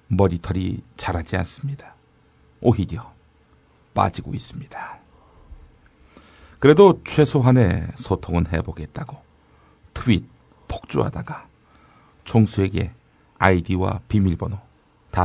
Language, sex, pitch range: Korean, male, 75-125 Hz